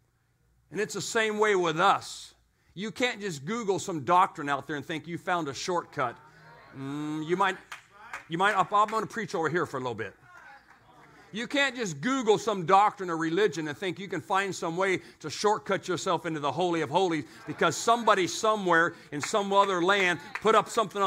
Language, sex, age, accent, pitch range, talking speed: English, male, 50-69, American, 175-225 Hz, 195 wpm